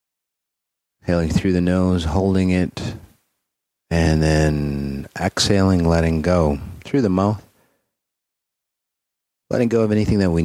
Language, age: English, 40-59